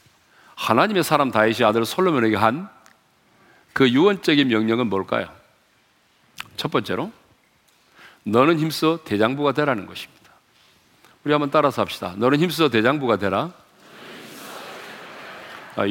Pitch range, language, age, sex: 110-160 Hz, Korean, 40-59, male